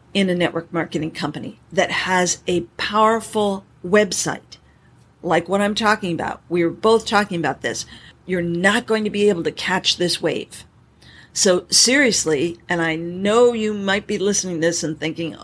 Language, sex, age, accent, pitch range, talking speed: English, female, 40-59, American, 170-215 Hz, 165 wpm